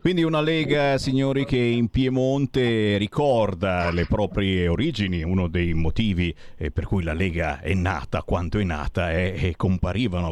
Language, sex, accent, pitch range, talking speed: Italian, male, native, 95-130 Hz, 165 wpm